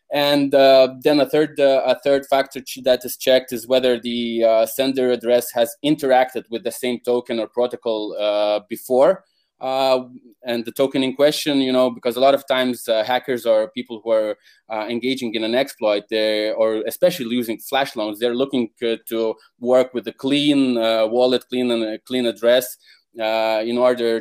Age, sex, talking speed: 20-39, male, 185 wpm